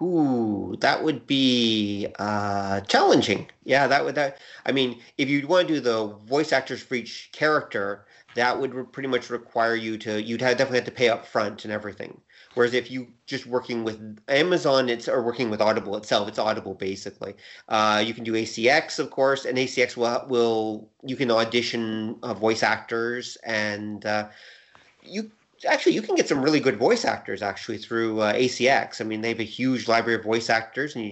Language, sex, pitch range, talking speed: English, male, 110-125 Hz, 195 wpm